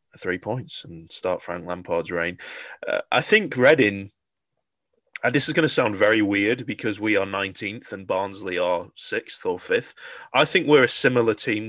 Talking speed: 180 wpm